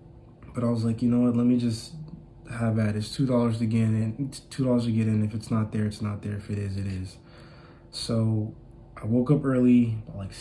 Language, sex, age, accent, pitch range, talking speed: English, male, 20-39, American, 110-125 Hz, 230 wpm